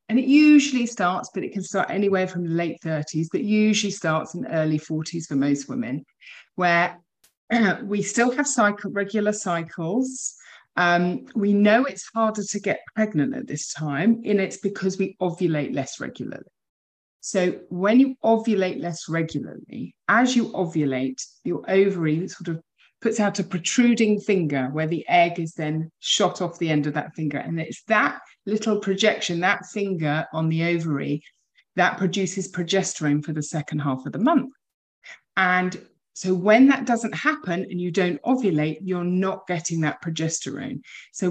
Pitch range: 165-210 Hz